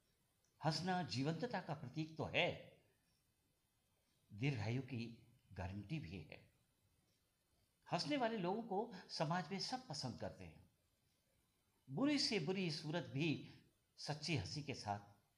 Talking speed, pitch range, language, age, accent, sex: 115 wpm, 110-180 Hz, Hindi, 60-79, native, male